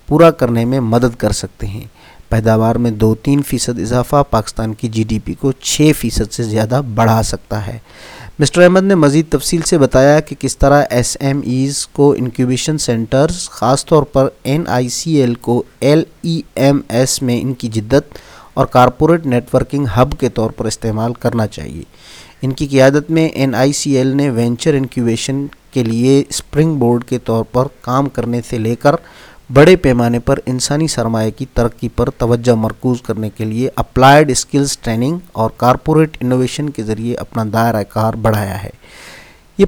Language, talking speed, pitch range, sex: Urdu, 175 wpm, 115-145 Hz, male